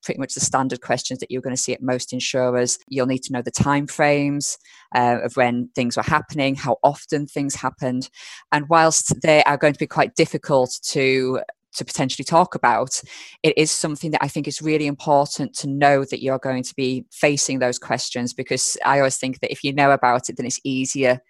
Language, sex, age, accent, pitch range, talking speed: English, female, 20-39, British, 125-145 Hz, 210 wpm